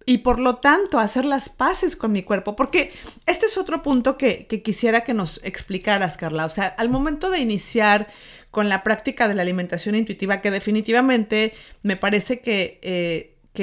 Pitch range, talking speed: 190-245 Hz, 185 wpm